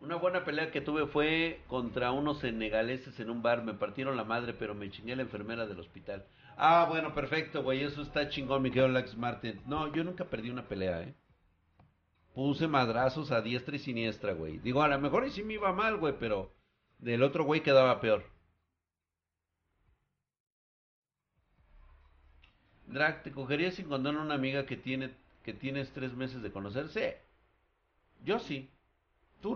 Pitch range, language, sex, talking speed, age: 95-145 Hz, Spanish, male, 170 wpm, 50-69